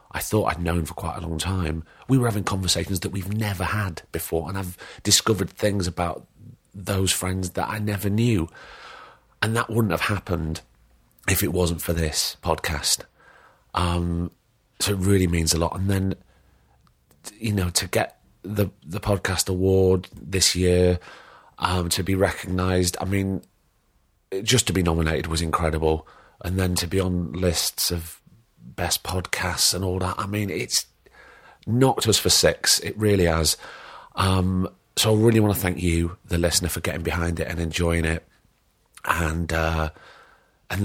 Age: 30-49